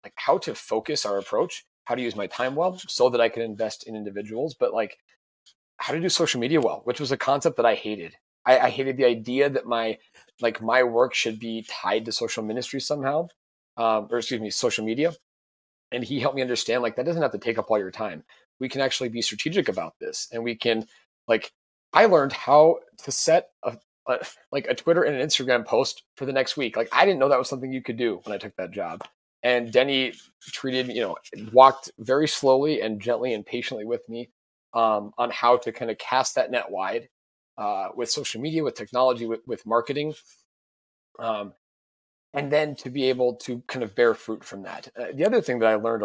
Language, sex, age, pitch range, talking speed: English, male, 30-49, 110-135 Hz, 220 wpm